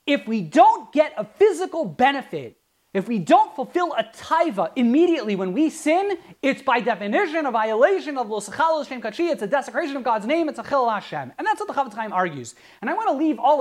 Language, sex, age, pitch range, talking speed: English, male, 30-49, 220-310 Hz, 210 wpm